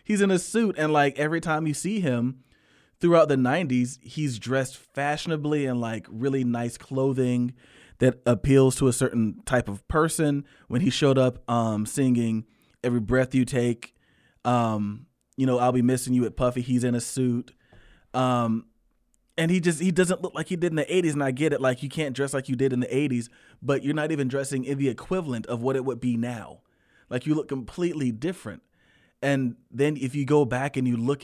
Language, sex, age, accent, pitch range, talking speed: English, male, 20-39, American, 125-155 Hz, 205 wpm